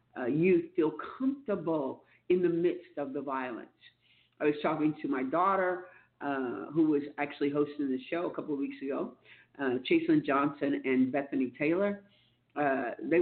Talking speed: 165 wpm